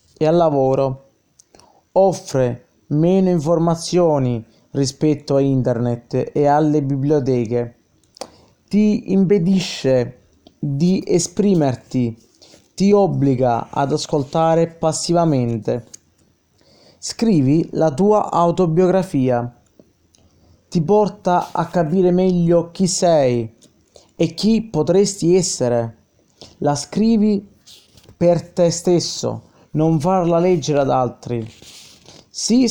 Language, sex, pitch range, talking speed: Italian, male, 120-180 Hz, 85 wpm